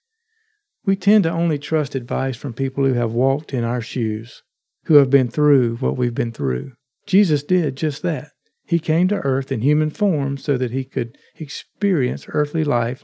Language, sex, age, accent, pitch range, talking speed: English, male, 50-69, American, 130-165 Hz, 185 wpm